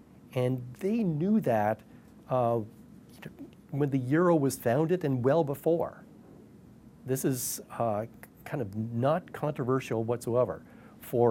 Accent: American